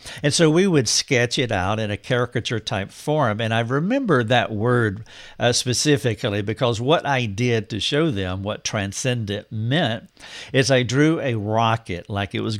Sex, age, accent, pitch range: male, 60-79, American, 105-130 Hz